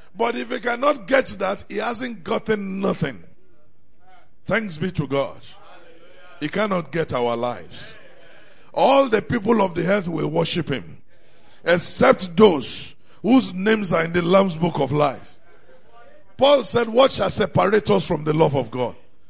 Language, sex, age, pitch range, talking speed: English, male, 50-69, 180-245 Hz, 155 wpm